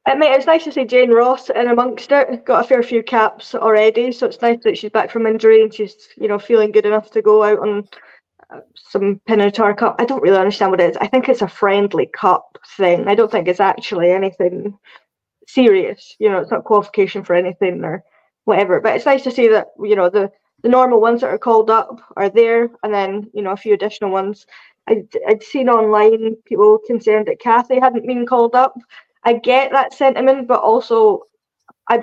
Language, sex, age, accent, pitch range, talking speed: English, female, 10-29, British, 200-235 Hz, 210 wpm